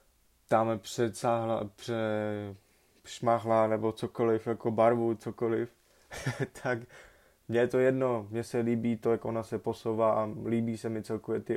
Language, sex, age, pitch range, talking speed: Czech, male, 20-39, 105-115 Hz, 140 wpm